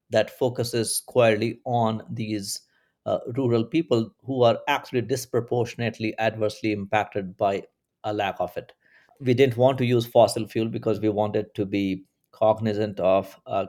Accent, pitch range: Indian, 105-120 Hz